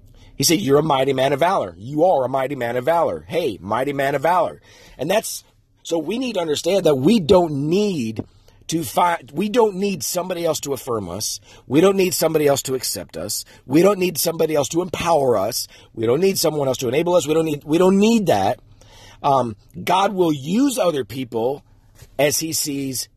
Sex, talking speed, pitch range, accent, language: male, 210 wpm, 115-165 Hz, American, English